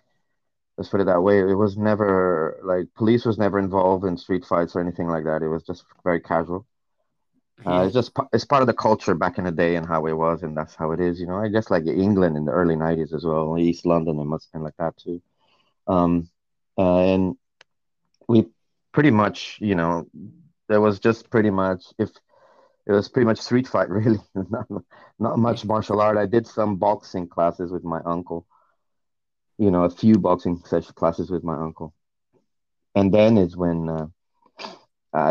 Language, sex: English, male